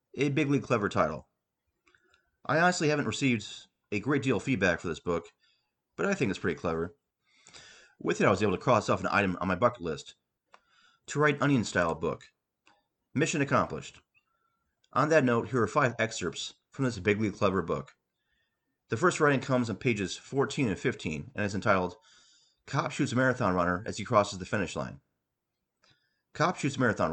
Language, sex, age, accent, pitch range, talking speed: English, male, 30-49, American, 105-150 Hz, 180 wpm